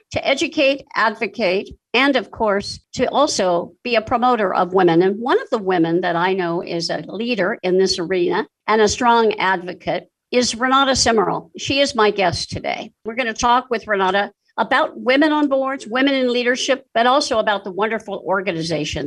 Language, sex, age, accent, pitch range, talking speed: English, female, 50-69, American, 185-245 Hz, 185 wpm